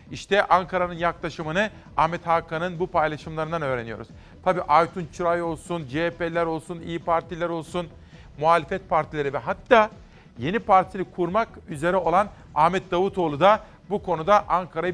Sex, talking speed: male, 130 wpm